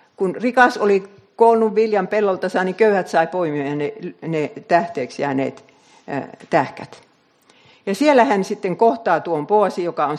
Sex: female